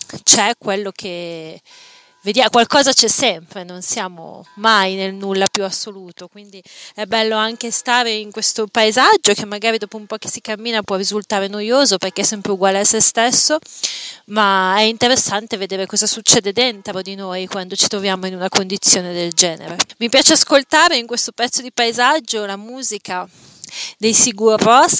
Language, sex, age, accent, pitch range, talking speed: Italian, female, 30-49, native, 190-235 Hz, 170 wpm